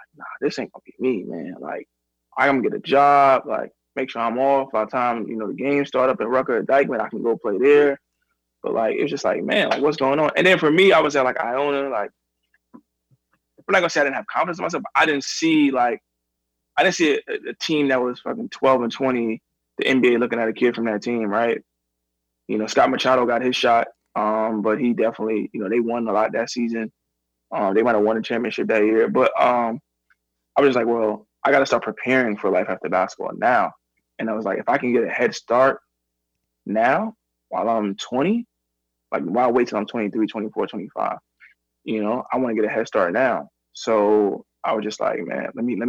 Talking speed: 240 wpm